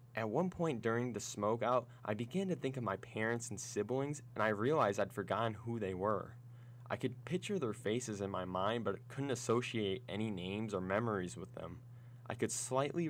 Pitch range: 105-125 Hz